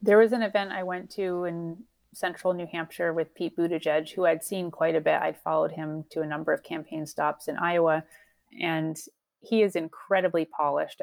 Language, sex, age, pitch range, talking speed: English, female, 30-49, 155-200 Hz, 195 wpm